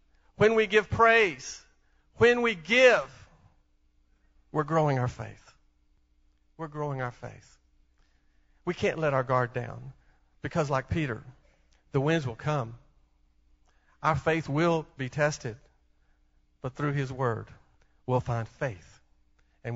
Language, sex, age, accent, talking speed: English, male, 50-69, American, 125 wpm